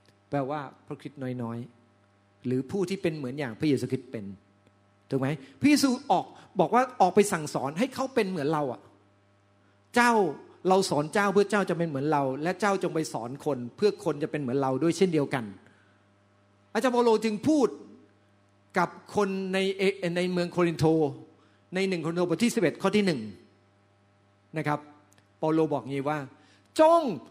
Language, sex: Thai, male